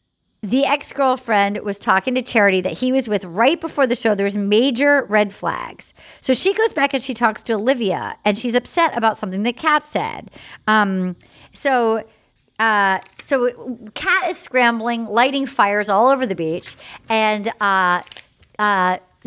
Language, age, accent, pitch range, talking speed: English, 40-59, American, 195-260 Hz, 160 wpm